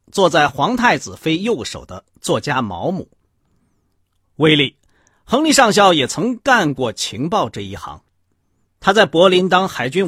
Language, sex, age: Chinese, male, 50-69